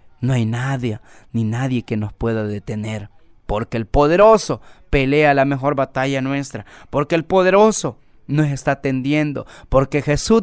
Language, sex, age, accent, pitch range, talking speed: Spanish, male, 30-49, Mexican, 145-200 Hz, 145 wpm